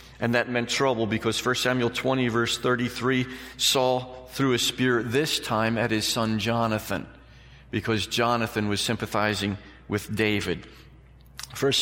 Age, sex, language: 40-59, male, English